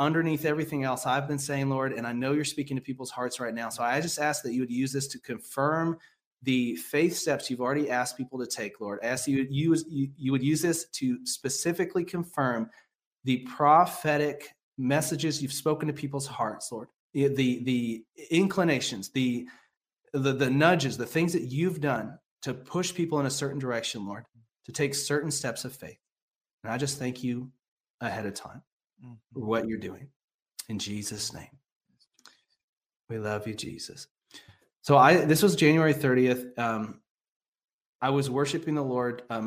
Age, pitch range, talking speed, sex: 30-49, 115-145 Hz, 175 wpm, male